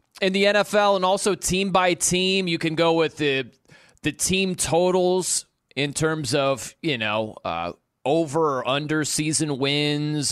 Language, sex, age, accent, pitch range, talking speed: English, male, 30-49, American, 155-210 Hz, 155 wpm